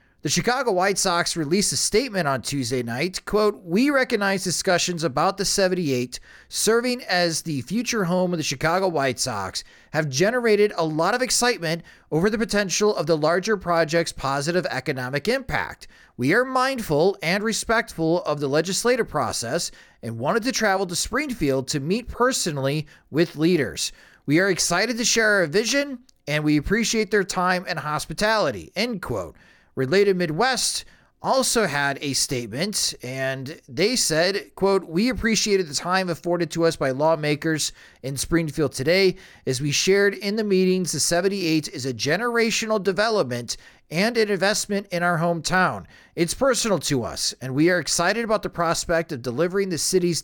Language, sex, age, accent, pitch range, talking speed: English, male, 30-49, American, 150-205 Hz, 160 wpm